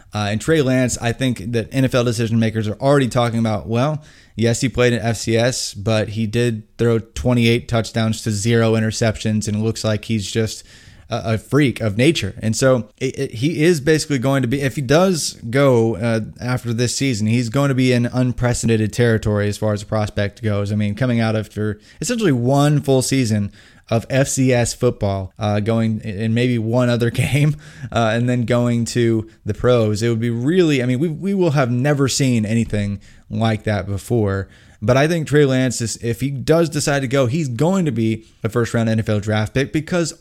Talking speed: 200 wpm